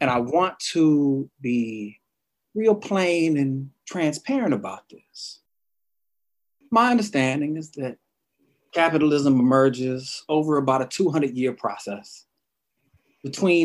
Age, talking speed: 30-49, 100 wpm